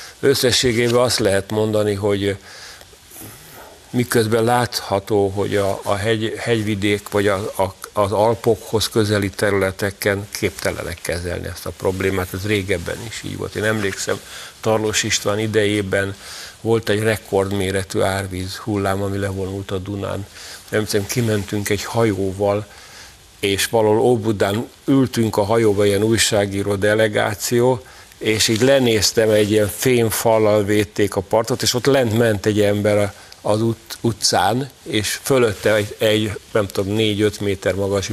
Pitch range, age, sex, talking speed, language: 100-115 Hz, 50-69, male, 130 wpm, Hungarian